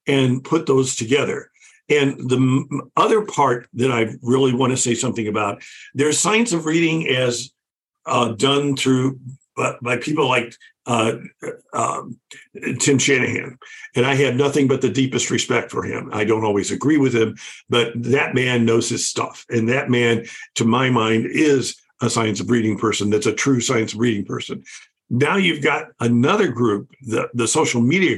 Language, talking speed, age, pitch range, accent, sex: English, 170 wpm, 50-69, 120-150 Hz, American, male